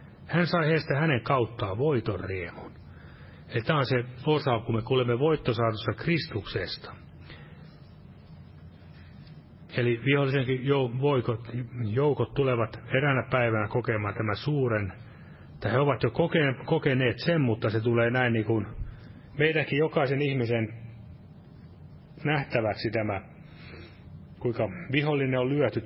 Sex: male